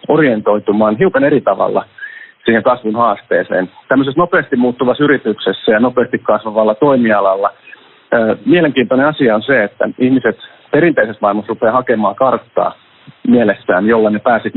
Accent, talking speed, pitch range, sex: native, 125 wpm, 105-130 Hz, male